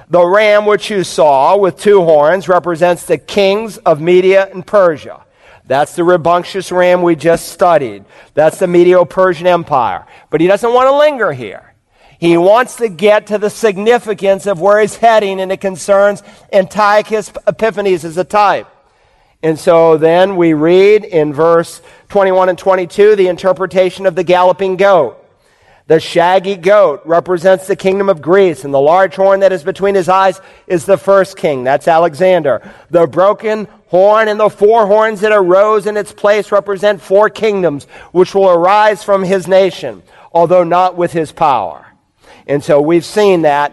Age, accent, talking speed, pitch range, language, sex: 50-69, American, 170 wpm, 170-200 Hz, English, male